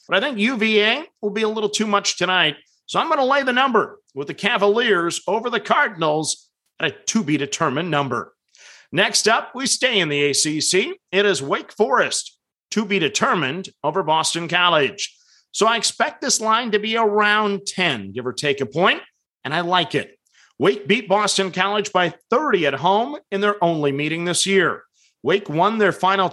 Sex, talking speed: male, 185 wpm